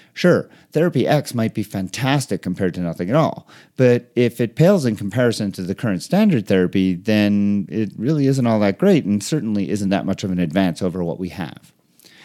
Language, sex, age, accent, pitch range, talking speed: English, male, 40-59, American, 95-140 Hz, 200 wpm